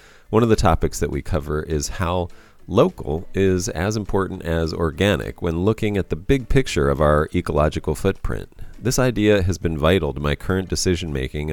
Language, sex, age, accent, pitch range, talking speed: English, male, 30-49, American, 75-105 Hz, 180 wpm